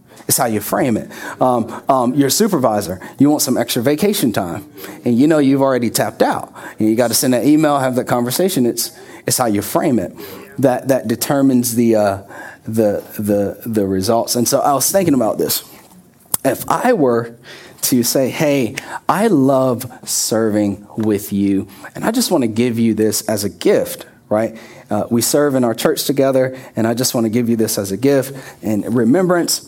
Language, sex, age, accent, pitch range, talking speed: English, male, 30-49, American, 110-140 Hz, 195 wpm